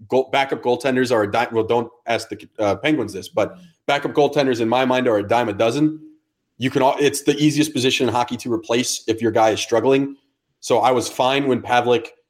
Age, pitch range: 30-49, 120-160 Hz